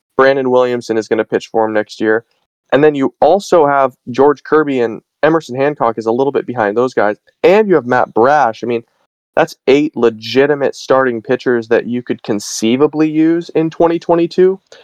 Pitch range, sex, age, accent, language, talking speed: 115-140 Hz, male, 20-39, American, English, 185 wpm